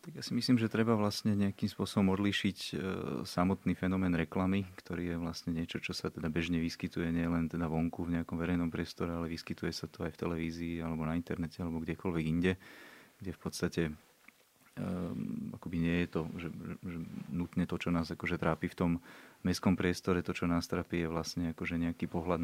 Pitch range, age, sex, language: 80-90 Hz, 30-49, male, Slovak